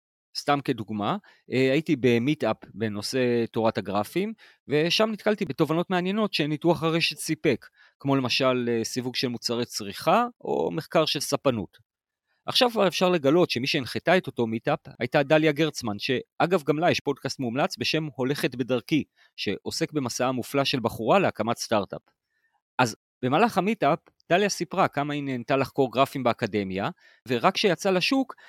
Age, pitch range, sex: 30-49, 120-175 Hz, male